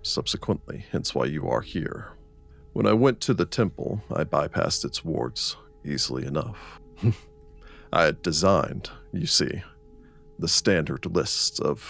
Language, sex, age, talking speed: English, male, 40-59, 135 wpm